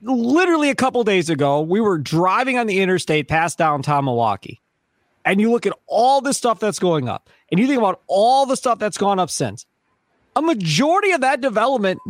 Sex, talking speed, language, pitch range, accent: male, 200 wpm, English, 160-230 Hz, American